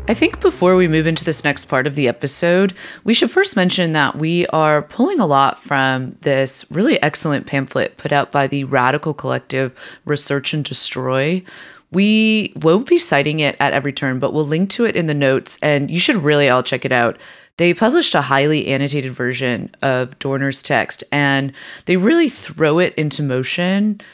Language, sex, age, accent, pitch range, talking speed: English, female, 30-49, American, 135-175 Hz, 190 wpm